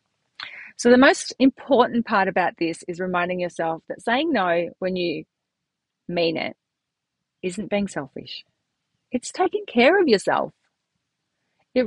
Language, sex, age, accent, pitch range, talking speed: English, female, 40-59, Australian, 170-235 Hz, 130 wpm